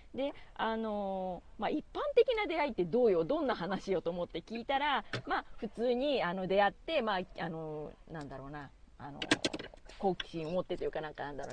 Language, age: Japanese, 40-59